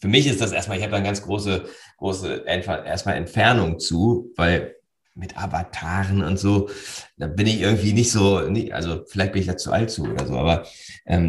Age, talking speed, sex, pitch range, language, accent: 40-59, 205 wpm, male, 95-115 Hz, German, German